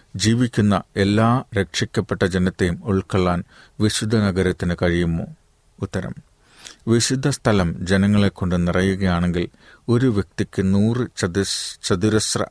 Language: Malayalam